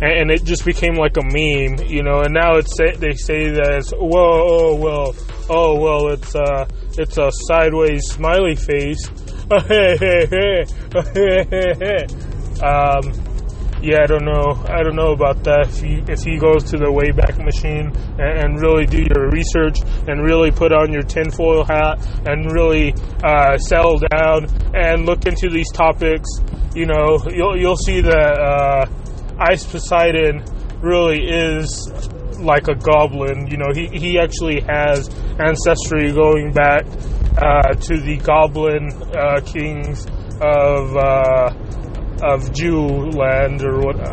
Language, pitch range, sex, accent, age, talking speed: English, 130-160 Hz, male, American, 20-39, 145 wpm